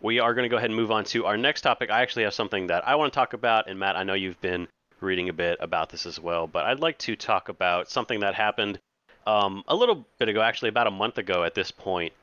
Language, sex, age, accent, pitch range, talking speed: English, male, 30-49, American, 90-110 Hz, 285 wpm